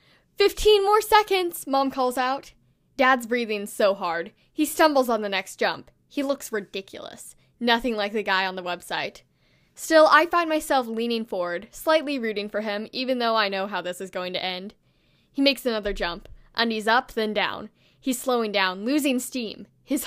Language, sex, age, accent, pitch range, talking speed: English, female, 10-29, American, 205-265 Hz, 180 wpm